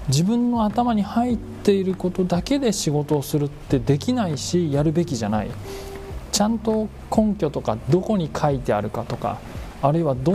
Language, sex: Japanese, male